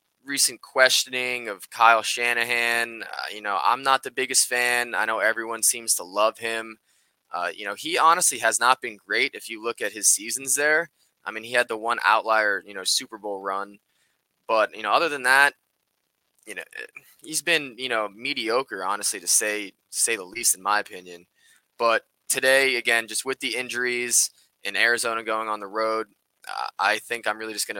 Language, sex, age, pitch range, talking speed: English, male, 20-39, 100-120 Hz, 195 wpm